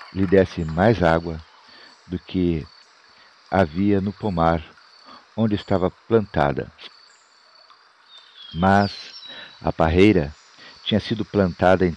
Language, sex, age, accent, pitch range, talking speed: Portuguese, male, 50-69, Brazilian, 85-105 Hz, 95 wpm